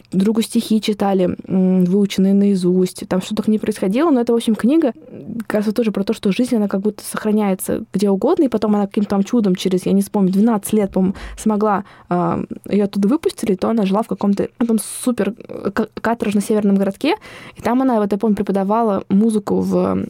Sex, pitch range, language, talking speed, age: female, 195-225 Hz, Russian, 190 wpm, 20-39